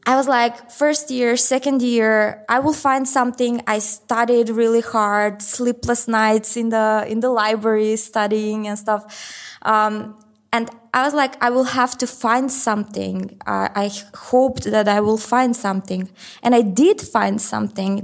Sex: female